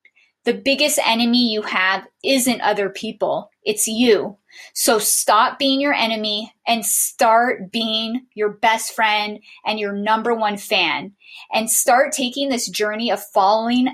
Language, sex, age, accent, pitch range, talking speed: English, female, 20-39, American, 210-255 Hz, 140 wpm